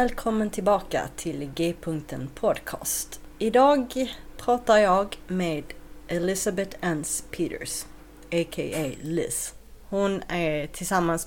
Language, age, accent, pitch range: Swedish, 40-59, native, 160-210 Hz